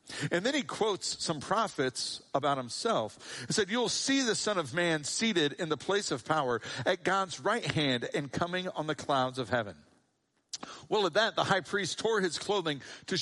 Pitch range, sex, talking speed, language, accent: 150-205 Hz, male, 195 wpm, English, American